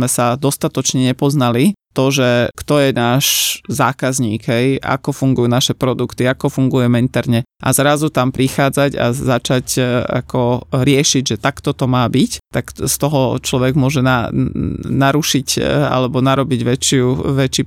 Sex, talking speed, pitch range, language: male, 145 wpm, 125-145 Hz, Slovak